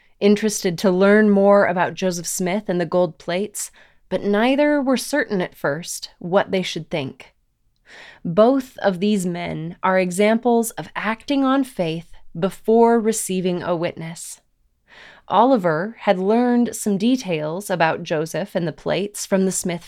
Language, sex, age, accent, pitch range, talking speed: English, female, 20-39, American, 170-220 Hz, 145 wpm